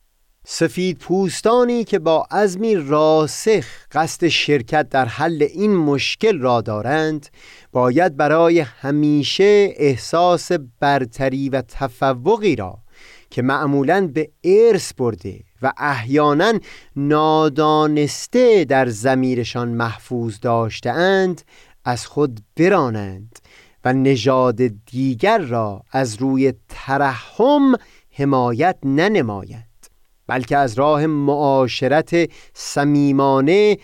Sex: male